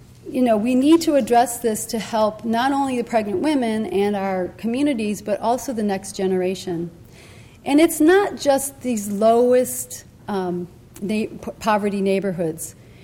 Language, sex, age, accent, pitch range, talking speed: English, female, 40-59, American, 185-245 Hz, 145 wpm